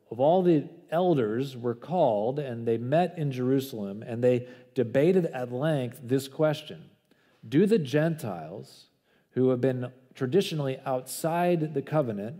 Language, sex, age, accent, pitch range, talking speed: English, male, 40-59, American, 120-150 Hz, 135 wpm